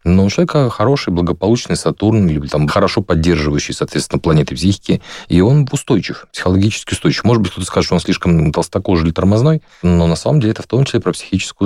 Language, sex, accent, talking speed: Russian, male, native, 195 wpm